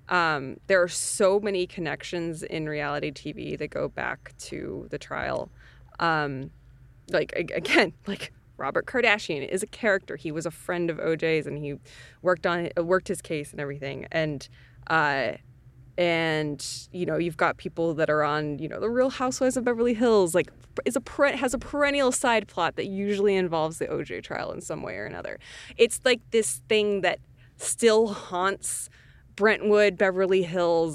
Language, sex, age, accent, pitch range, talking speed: English, female, 20-39, American, 155-210 Hz, 170 wpm